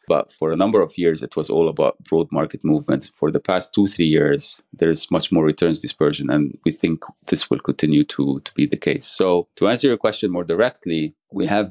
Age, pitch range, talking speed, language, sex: 30-49, 75-85 Hz, 225 wpm, English, male